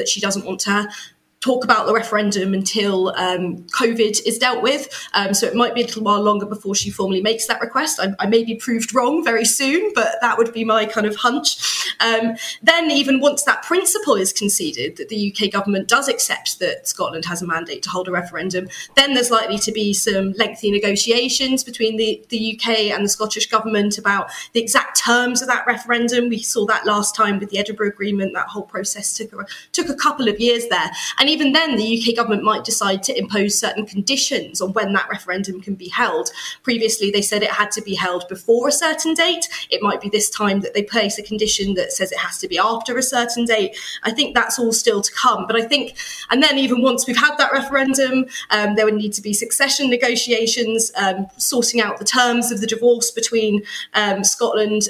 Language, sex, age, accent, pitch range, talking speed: German, female, 20-39, British, 205-245 Hz, 220 wpm